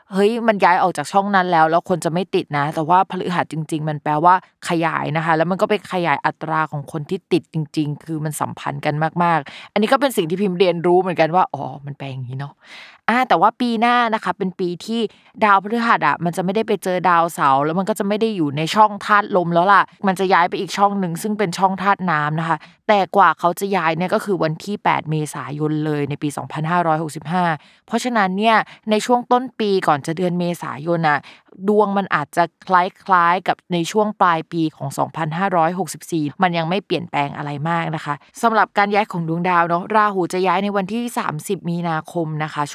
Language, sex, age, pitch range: Thai, female, 20-39, 155-195 Hz